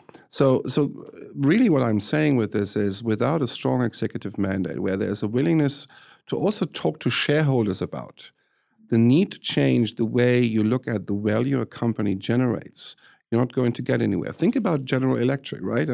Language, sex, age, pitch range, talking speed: English, male, 50-69, 105-130 Hz, 185 wpm